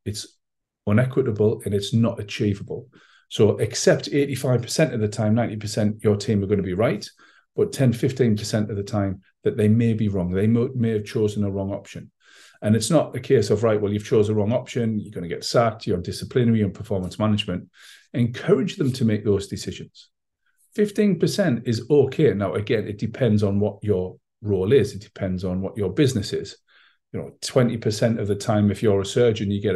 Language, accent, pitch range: English, British, 100-125 Hz